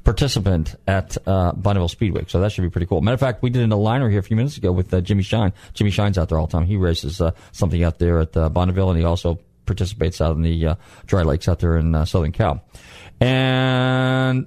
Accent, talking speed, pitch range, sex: American, 255 wpm, 85-110 Hz, male